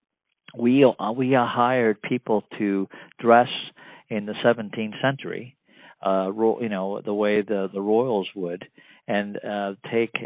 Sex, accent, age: male, American, 50-69